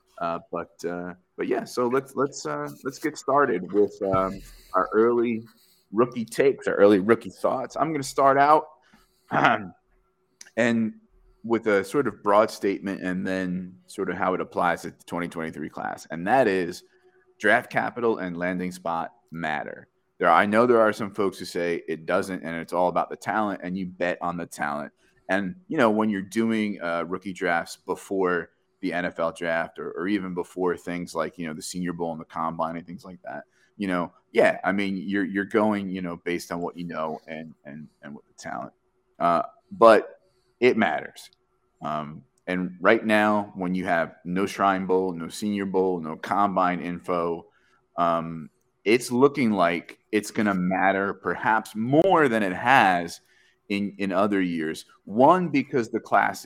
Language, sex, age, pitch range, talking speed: English, male, 30-49, 90-115 Hz, 180 wpm